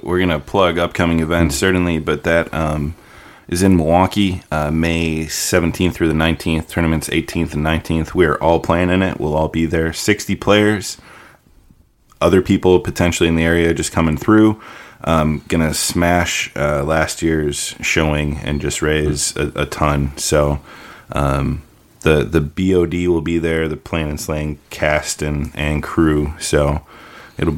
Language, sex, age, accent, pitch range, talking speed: English, male, 20-39, American, 75-85 Hz, 165 wpm